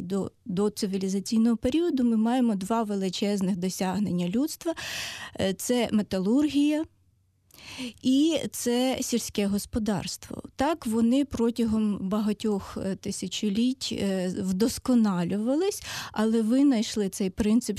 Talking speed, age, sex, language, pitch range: 90 wpm, 20-39, female, Ukrainian, 205-260 Hz